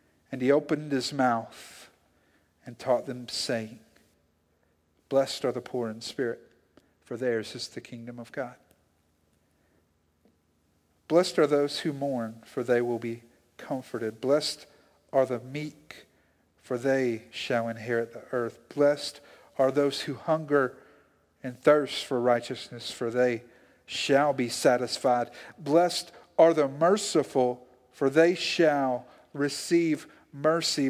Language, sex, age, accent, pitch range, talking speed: English, male, 50-69, American, 115-140 Hz, 125 wpm